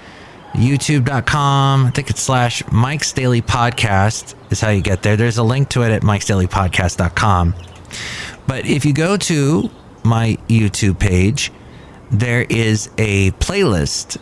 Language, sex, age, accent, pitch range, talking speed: English, male, 30-49, American, 95-125 Hz, 145 wpm